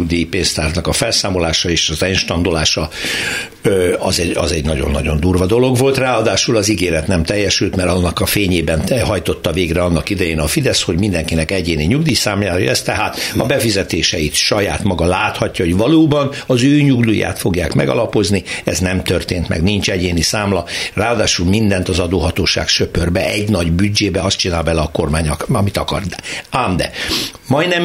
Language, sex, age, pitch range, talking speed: Hungarian, male, 60-79, 90-120 Hz, 155 wpm